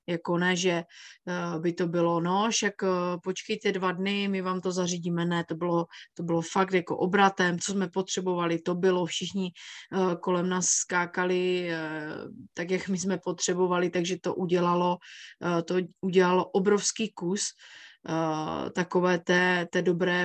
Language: Czech